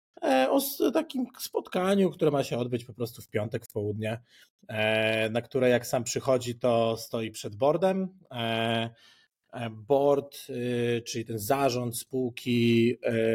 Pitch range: 115-135 Hz